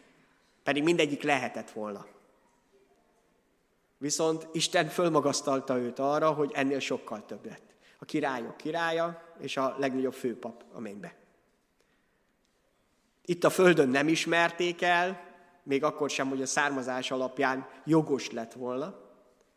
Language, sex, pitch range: Hungarian, male, 130-170 Hz